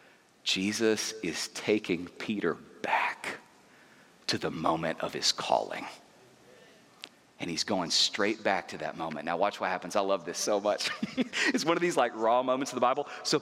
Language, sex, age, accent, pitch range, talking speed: English, male, 30-49, American, 180-240 Hz, 175 wpm